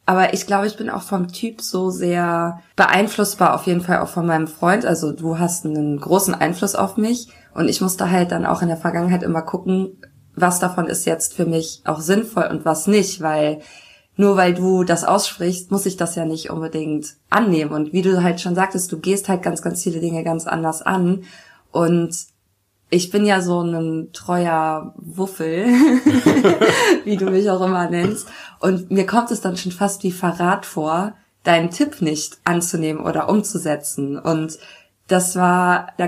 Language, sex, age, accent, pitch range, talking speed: German, female, 20-39, German, 165-195 Hz, 185 wpm